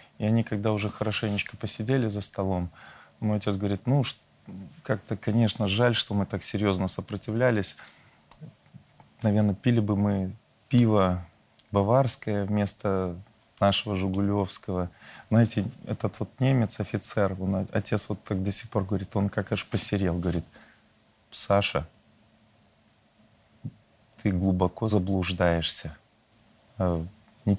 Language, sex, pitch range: Russian, male, 95-110 Hz